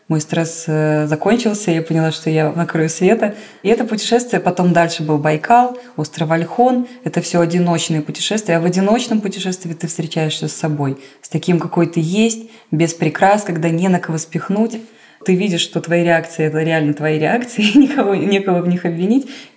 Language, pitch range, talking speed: Russian, 165-210 Hz, 175 wpm